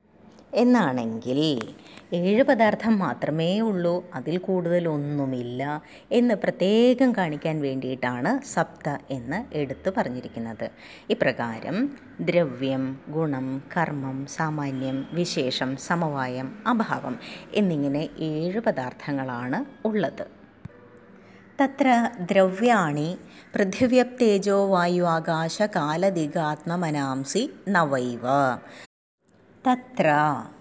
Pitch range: 145-200 Hz